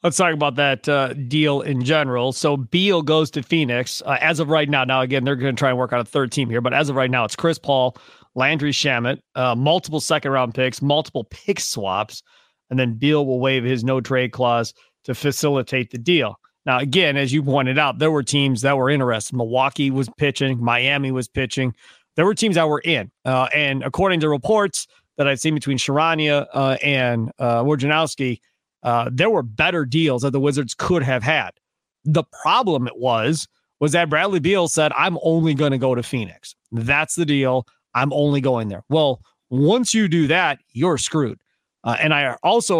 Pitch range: 130-155 Hz